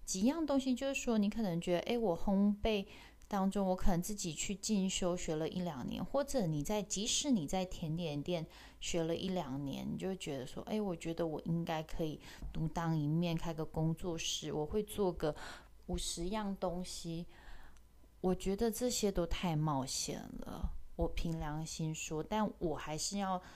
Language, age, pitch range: Chinese, 20-39, 160-200 Hz